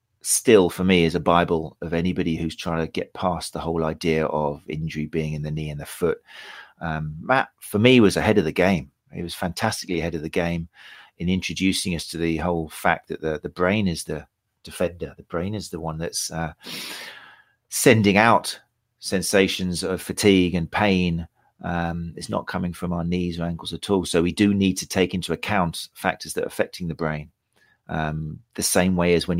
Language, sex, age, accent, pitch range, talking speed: English, male, 40-59, British, 80-95 Hz, 205 wpm